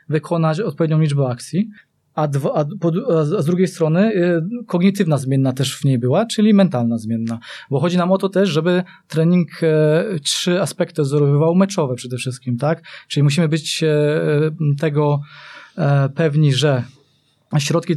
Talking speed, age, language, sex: 130 wpm, 20-39, Polish, male